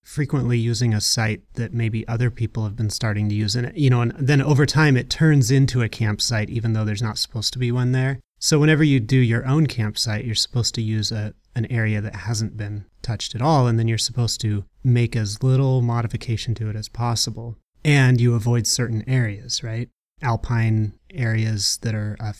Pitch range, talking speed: 110-130 Hz, 210 wpm